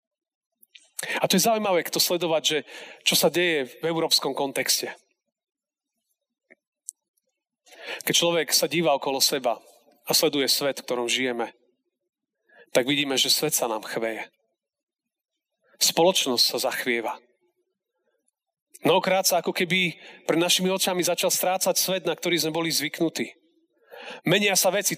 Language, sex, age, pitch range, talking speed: Slovak, male, 40-59, 160-195 Hz, 130 wpm